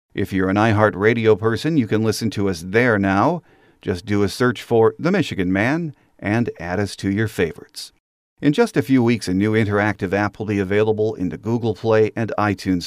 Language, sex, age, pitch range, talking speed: English, male, 50-69, 100-130 Hz, 205 wpm